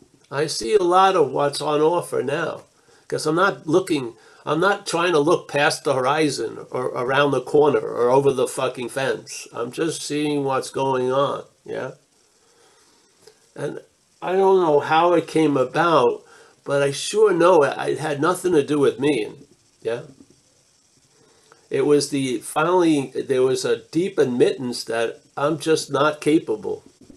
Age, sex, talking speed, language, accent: 60-79, male, 155 wpm, English, American